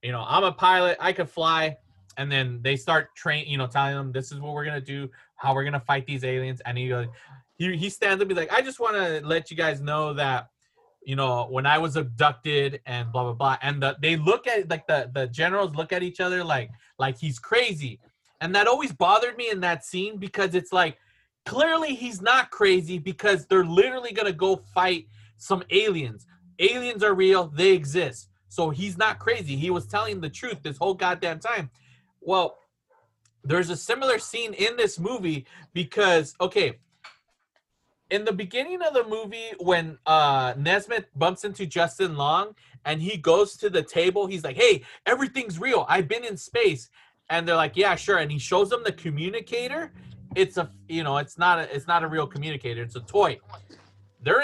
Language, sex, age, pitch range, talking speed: English, male, 20-39, 140-200 Hz, 205 wpm